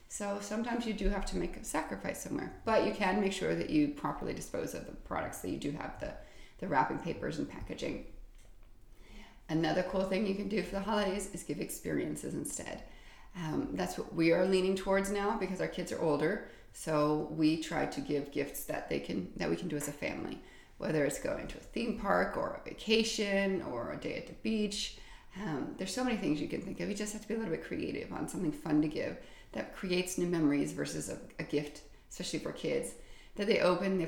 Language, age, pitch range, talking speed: English, 30-49, 160-215 Hz, 220 wpm